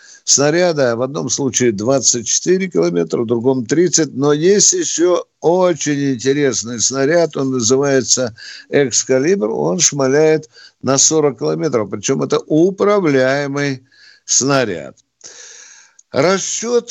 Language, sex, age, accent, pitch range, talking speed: Russian, male, 60-79, native, 125-180 Hz, 100 wpm